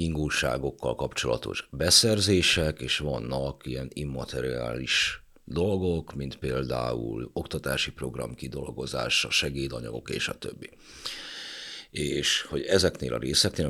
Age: 50-69